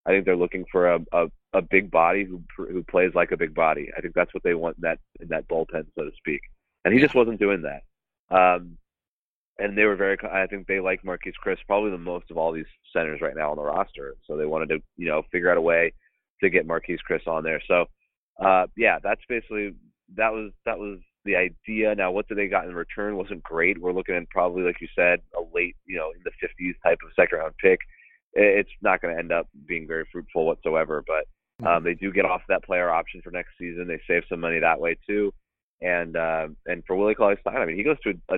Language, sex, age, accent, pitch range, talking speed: English, male, 30-49, American, 85-105 Hz, 245 wpm